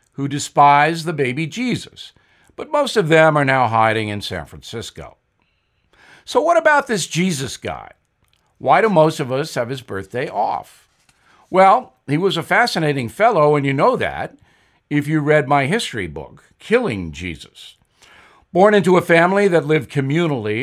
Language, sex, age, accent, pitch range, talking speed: English, male, 60-79, American, 125-170 Hz, 160 wpm